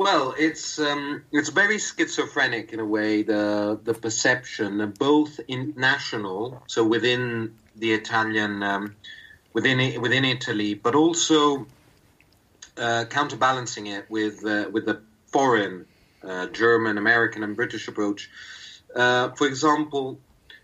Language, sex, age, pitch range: German, male, 30-49, 105-135 Hz